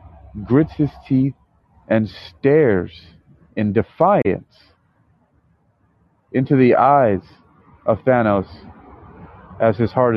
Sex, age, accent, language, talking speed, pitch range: male, 40-59, American, English, 90 wpm, 95-130 Hz